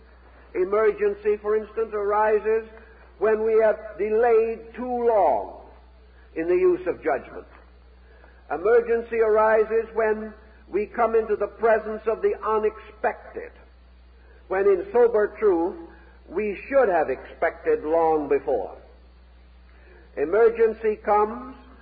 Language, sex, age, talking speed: English, male, 60-79, 105 wpm